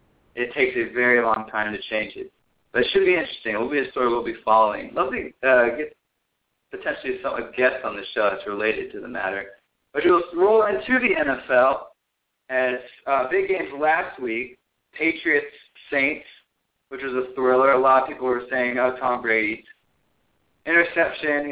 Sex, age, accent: male, 20-39, American